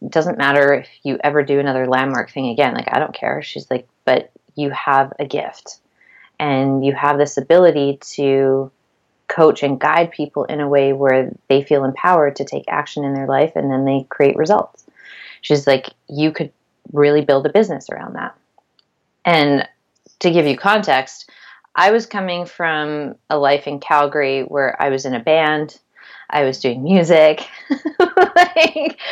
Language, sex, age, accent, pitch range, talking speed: English, female, 20-39, American, 135-160 Hz, 175 wpm